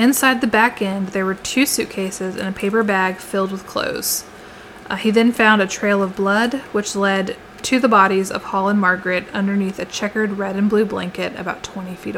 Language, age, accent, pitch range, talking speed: English, 20-39, American, 190-225 Hz, 205 wpm